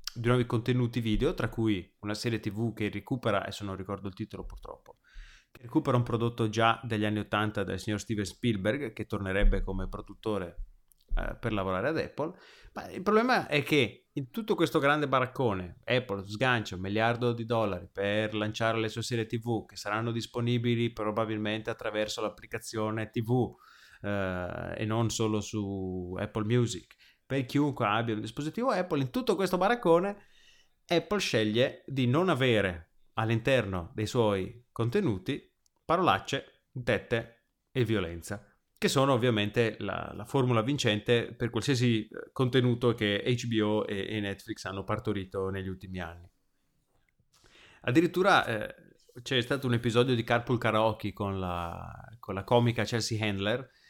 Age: 30-49